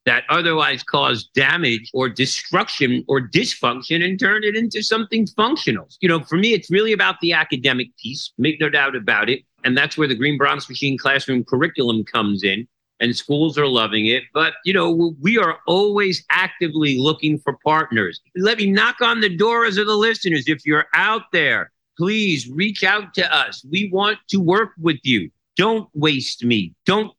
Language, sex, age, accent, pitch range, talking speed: English, male, 50-69, American, 145-205 Hz, 185 wpm